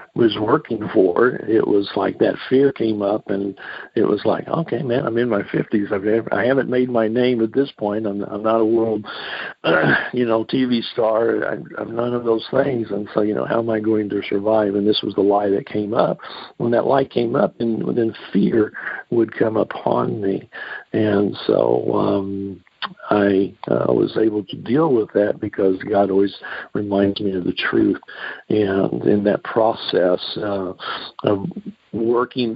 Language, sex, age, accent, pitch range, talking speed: English, male, 50-69, American, 100-115 Hz, 180 wpm